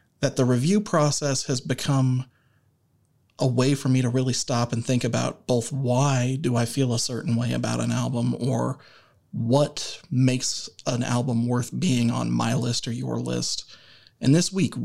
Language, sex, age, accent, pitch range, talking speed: English, male, 30-49, American, 120-140 Hz, 175 wpm